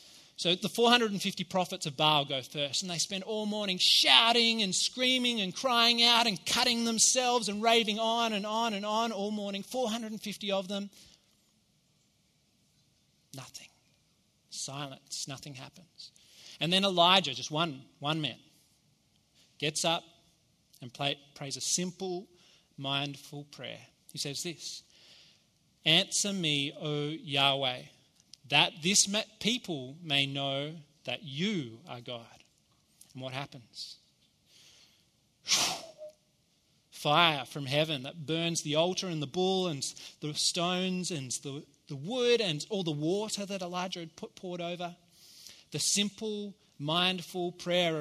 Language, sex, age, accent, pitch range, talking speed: English, male, 30-49, Australian, 150-200 Hz, 125 wpm